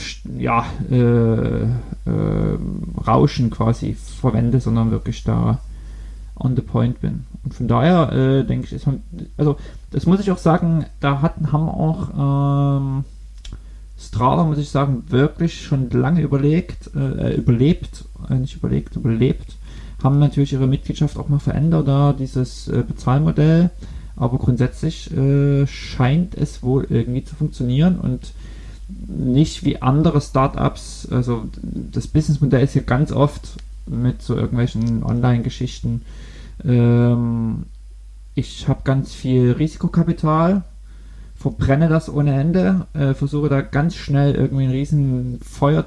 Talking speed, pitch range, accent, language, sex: 130 wpm, 125-155 Hz, German, German, male